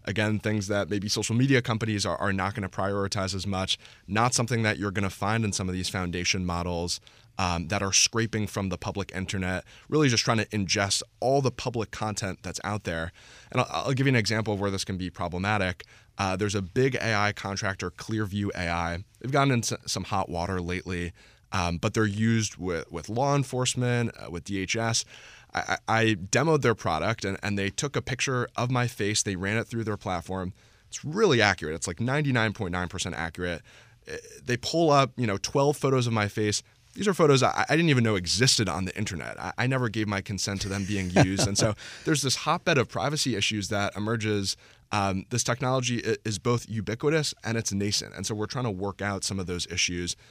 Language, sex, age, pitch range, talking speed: English, male, 20-39, 95-115 Hz, 210 wpm